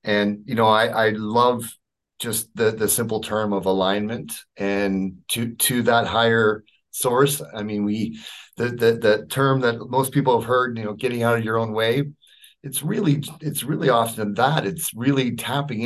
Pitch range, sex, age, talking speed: 105-140 Hz, male, 40-59, 180 wpm